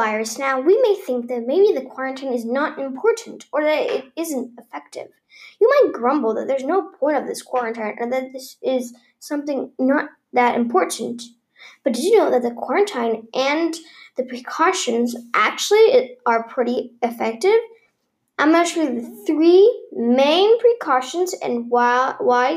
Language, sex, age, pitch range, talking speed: English, female, 10-29, 245-370 Hz, 150 wpm